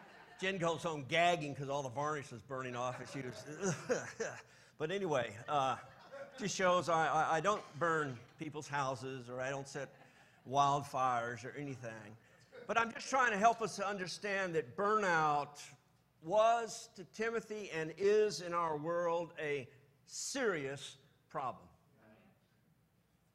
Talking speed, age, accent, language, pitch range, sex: 140 wpm, 50-69, American, English, 120-165 Hz, male